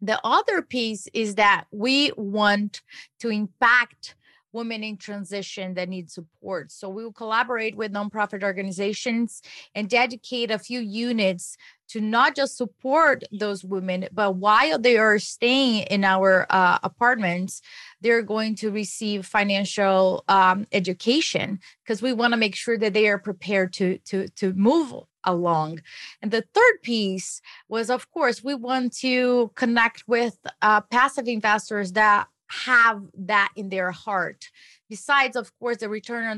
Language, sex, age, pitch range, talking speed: English, female, 30-49, 195-235 Hz, 150 wpm